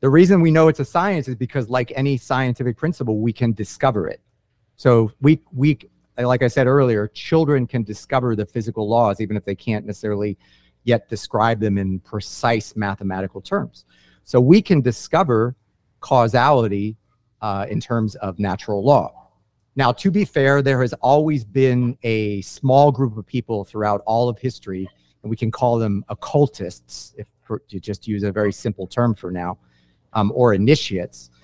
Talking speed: 170 wpm